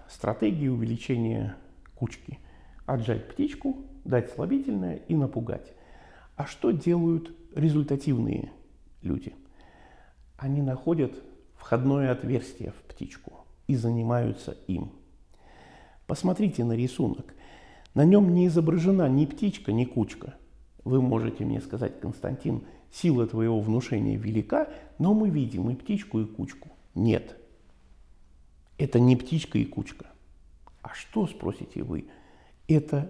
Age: 50-69